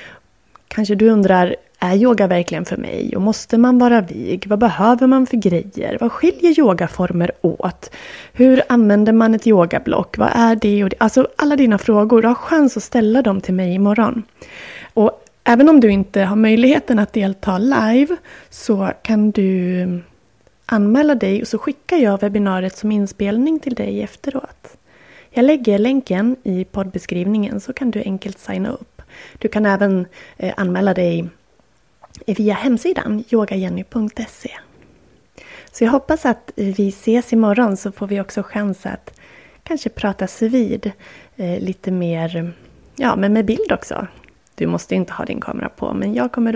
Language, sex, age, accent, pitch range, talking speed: Swedish, female, 20-39, native, 190-240 Hz, 155 wpm